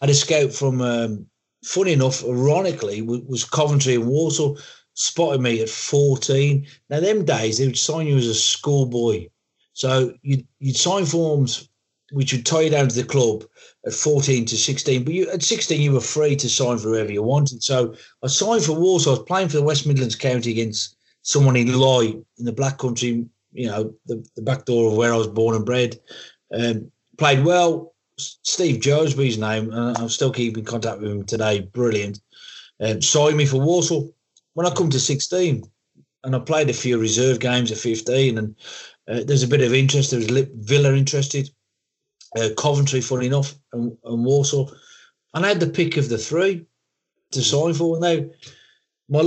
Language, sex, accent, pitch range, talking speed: English, male, British, 120-150 Hz, 190 wpm